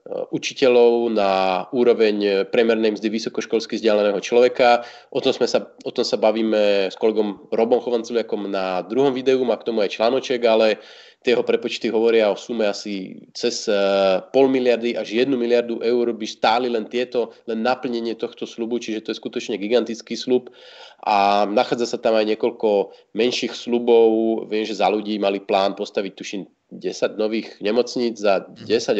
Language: Slovak